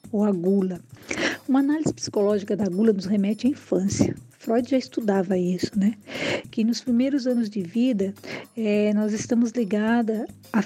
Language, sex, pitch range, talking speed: Portuguese, female, 205-245 Hz, 160 wpm